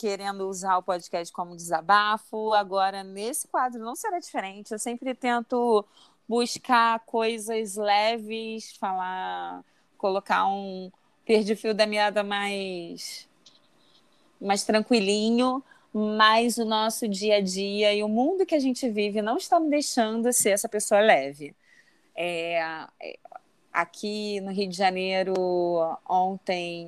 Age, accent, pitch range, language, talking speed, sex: 30-49, Brazilian, 190-245 Hz, Portuguese, 125 wpm, female